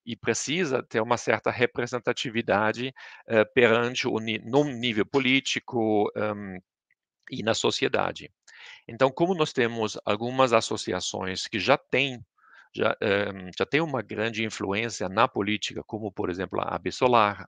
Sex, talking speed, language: male, 140 wpm, Portuguese